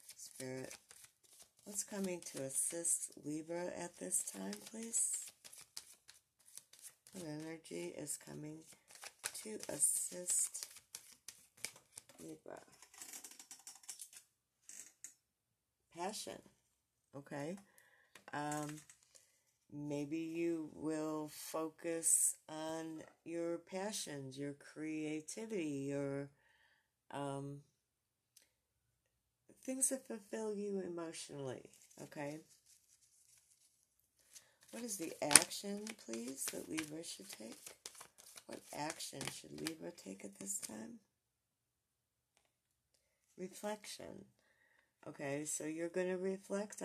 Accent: American